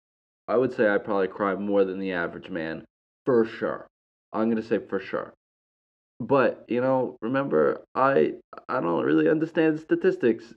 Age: 20-39